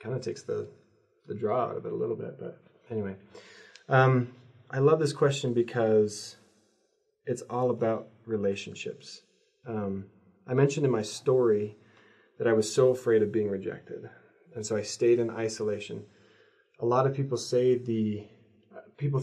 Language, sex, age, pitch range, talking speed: English, male, 30-49, 105-130 Hz, 160 wpm